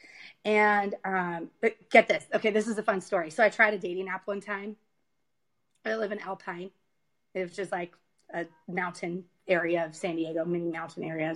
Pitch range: 180-210 Hz